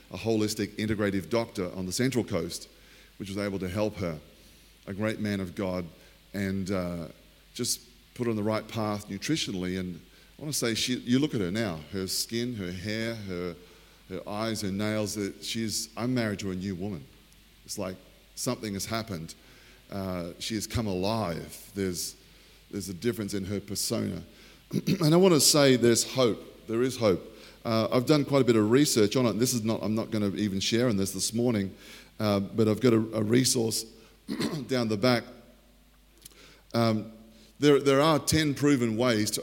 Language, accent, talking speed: English, Australian, 190 wpm